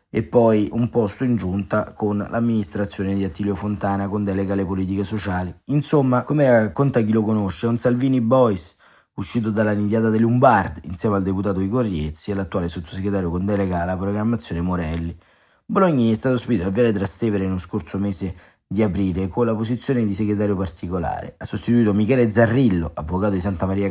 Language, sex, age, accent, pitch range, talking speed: Italian, male, 30-49, native, 95-120 Hz, 175 wpm